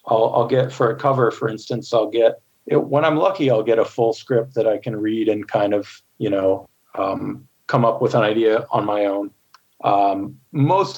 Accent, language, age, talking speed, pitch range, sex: American, English, 40-59, 210 wpm, 105-125 Hz, male